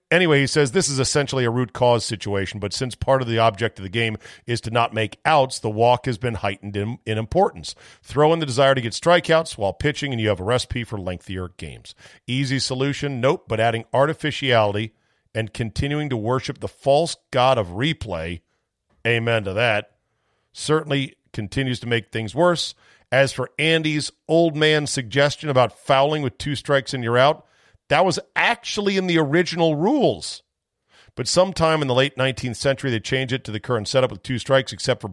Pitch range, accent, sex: 110-140 Hz, American, male